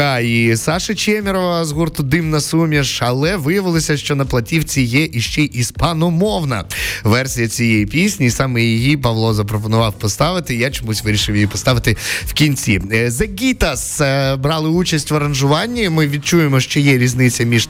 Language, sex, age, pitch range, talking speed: Ukrainian, male, 20-39, 115-160 Hz, 140 wpm